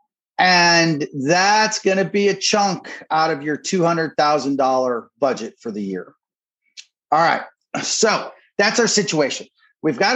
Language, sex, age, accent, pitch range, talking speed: English, male, 40-59, American, 150-205 Hz, 135 wpm